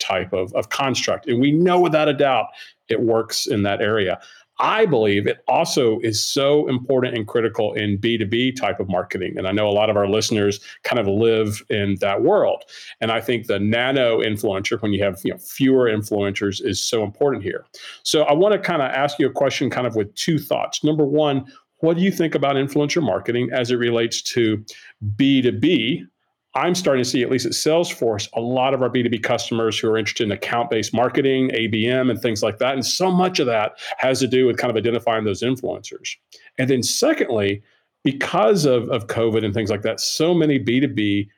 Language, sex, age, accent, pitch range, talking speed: English, male, 40-59, American, 110-140 Hz, 200 wpm